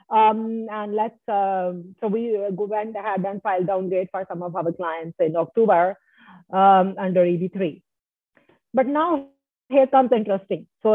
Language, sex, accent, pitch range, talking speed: English, female, Indian, 200-245 Hz, 155 wpm